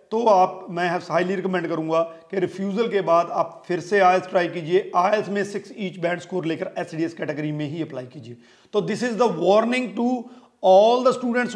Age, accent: 40-59, native